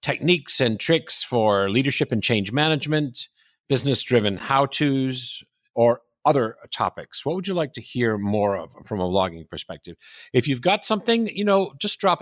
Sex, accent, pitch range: male, American, 105-145 Hz